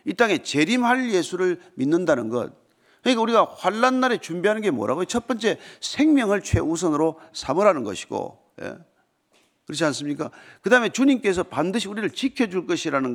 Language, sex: Korean, male